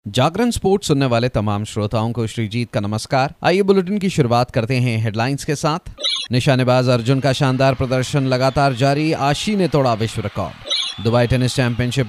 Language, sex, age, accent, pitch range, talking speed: Hindi, male, 30-49, native, 120-145 Hz, 170 wpm